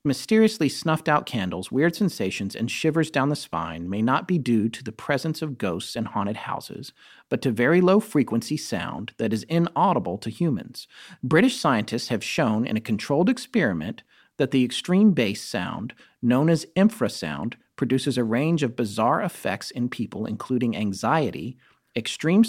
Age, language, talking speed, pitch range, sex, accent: 40-59, English, 165 wpm, 115-170 Hz, male, American